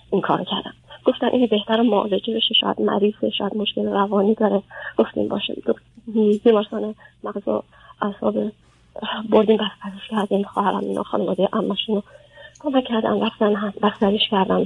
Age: 30-49